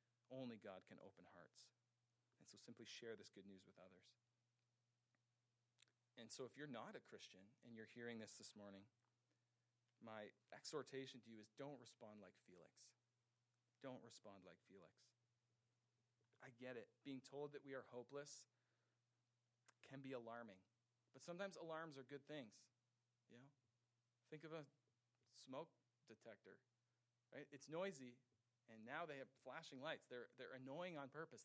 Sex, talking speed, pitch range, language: male, 150 wpm, 120-145 Hz, English